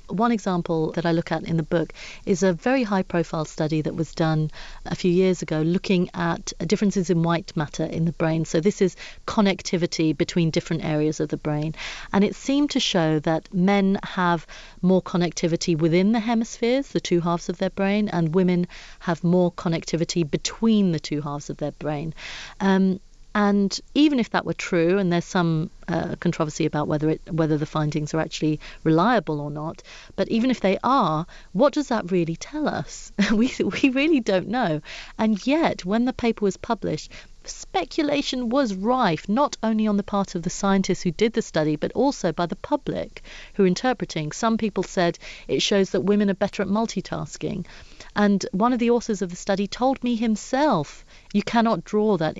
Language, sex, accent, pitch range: English, female, British, 165-210 Hz